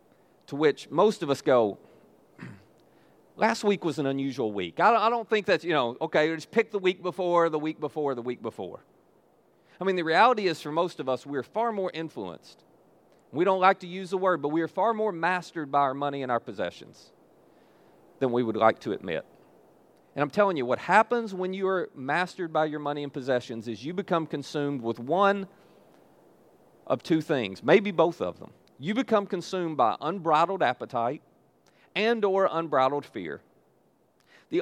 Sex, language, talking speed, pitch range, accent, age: male, English, 185 wpm, 140-185 Hz, American, 40-59